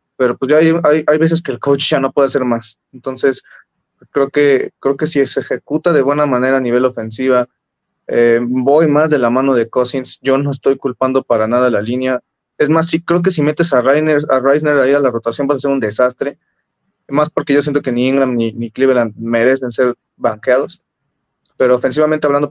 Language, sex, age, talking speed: Spanish, male, 20-39, 215 wpm